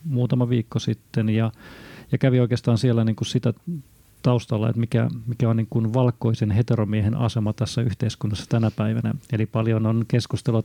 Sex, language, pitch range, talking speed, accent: male, Finnish, 115-135 Hz, 140 wpm, native